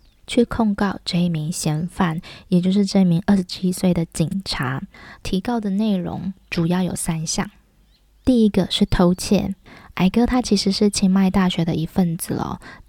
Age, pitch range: 20-39, 180-210 Hz